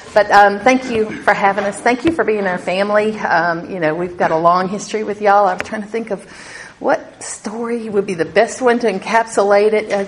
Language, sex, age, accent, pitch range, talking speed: English, female, 50-69, American, 180-235 Hz, 230 wpm